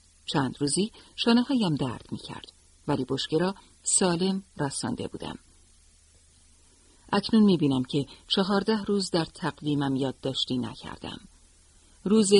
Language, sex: Persian, female